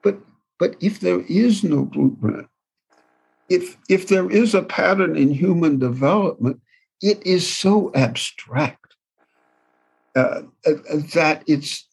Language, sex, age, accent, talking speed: English, male, 60-79, American, 110 wpm